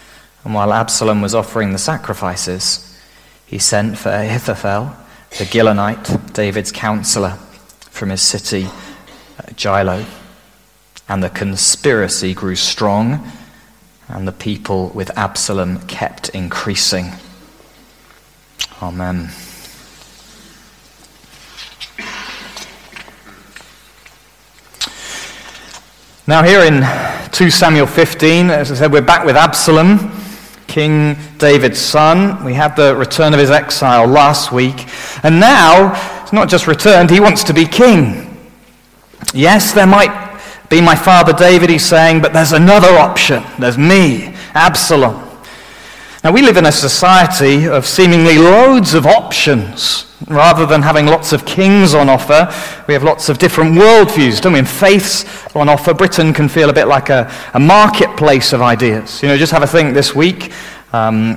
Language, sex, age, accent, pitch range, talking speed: English, male, 30-49, British, 115-170 Hz, 130 wpm